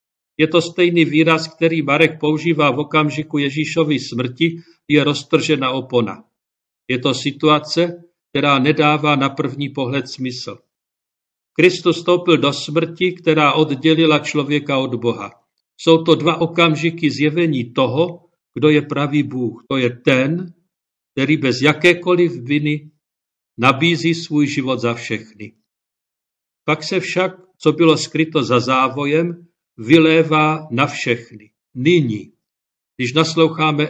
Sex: male